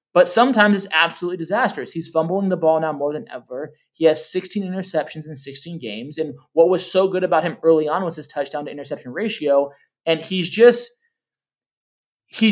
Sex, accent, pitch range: male, American, 150-190 Hz